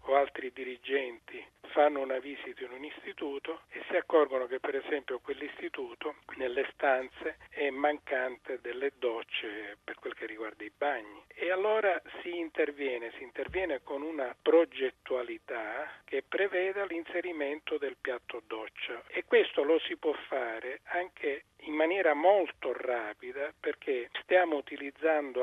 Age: 40-59